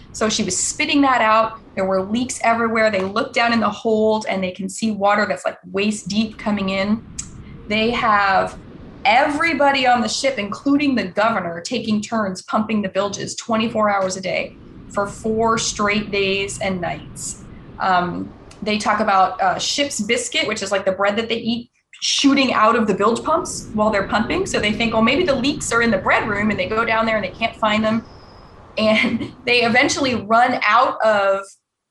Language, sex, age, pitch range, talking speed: English, female, 20-39, 205-245 Hz, 195 wpm